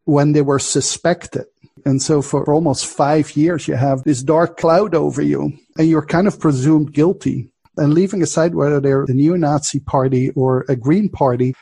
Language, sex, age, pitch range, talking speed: English, male, 50-69, 130-155 Hz, 180 wpm